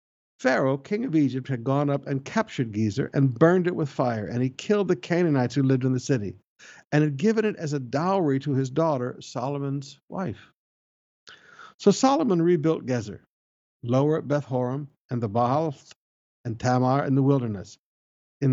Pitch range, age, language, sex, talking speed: 125-160 Hz, 60-79, English, male, 170 wpm